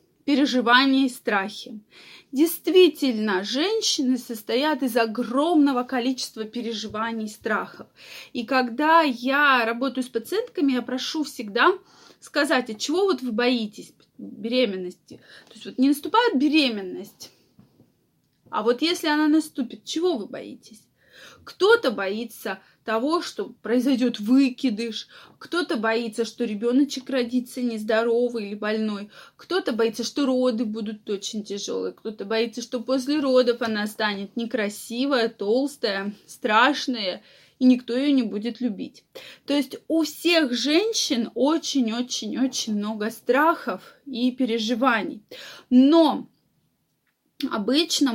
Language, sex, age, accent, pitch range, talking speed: Russian, female, 20-39, native, 225-280 Hz, 115 wpm